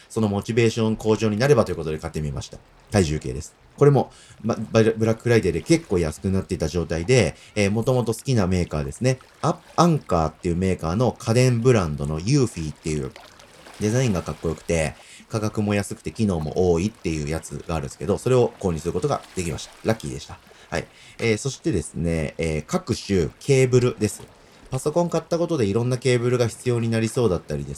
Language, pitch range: Japanese, 85-125 Hz